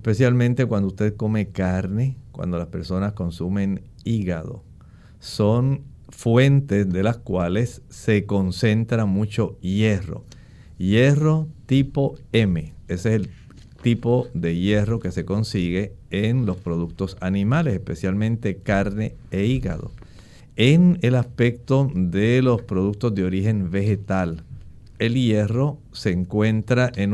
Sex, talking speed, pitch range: male, 115 wpm, 95-125 Hz